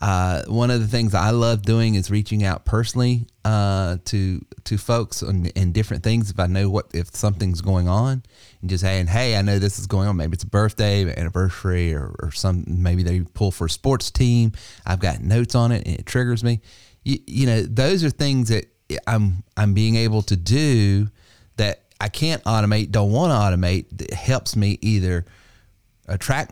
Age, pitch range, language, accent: 30-49, 95-115 Hz, English, American